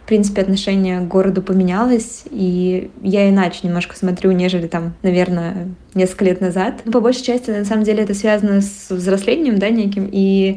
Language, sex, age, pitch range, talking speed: Russian, female, 20-39, 185-200 Hz, 175 wpm